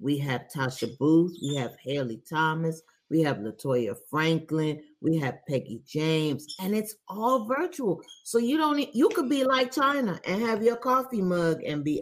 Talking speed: 180 wpm